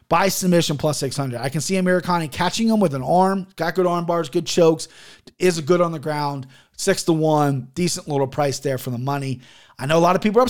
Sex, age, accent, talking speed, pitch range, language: male, 30-49, American, 235 wpm, 145-215 Hz, English